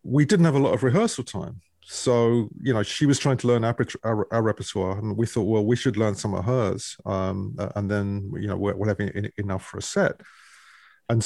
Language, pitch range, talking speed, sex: English, 95-115 Hz, 215 wpm, male